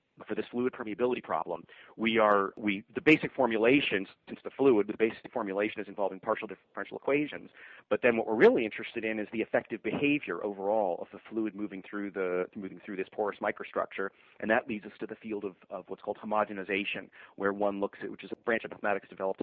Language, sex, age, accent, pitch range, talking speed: English, male, 30-49, American, 95-110 Hz, 210 wpm